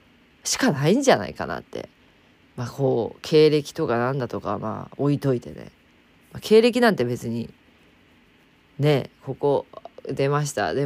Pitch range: 125-210 Hz